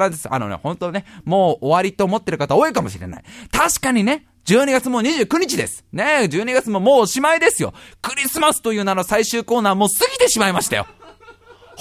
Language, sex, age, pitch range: Japanese, male, 20-39, 200-300 Hz